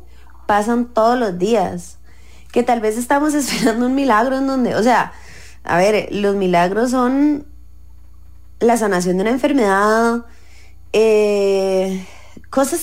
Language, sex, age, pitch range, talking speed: English, female, 20-39, 180-245 Hz, 125 wpm